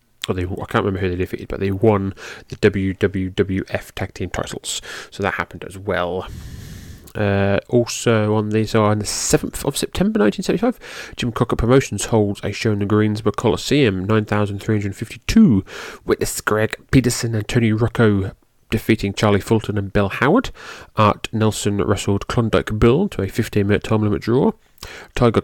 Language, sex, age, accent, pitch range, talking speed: English, male, 30-49, British, 100-115 Hz, 155 wpm